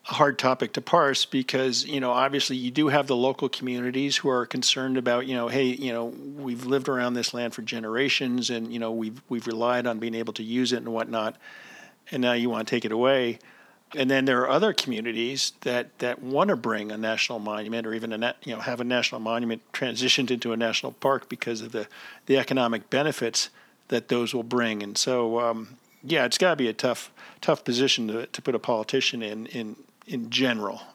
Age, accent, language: 50-69, American, English